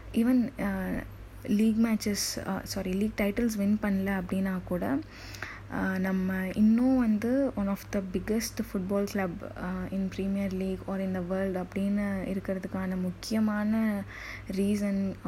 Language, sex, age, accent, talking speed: Tamil, female, 20-39, native, 120 wpm